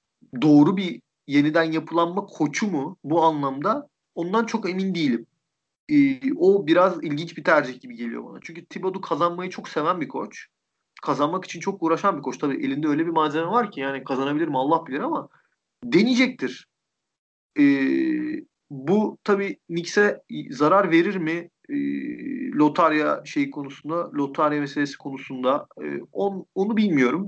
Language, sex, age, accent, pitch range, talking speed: Turkish, male, 40-59, native, 145-195 Hz, 145 wpm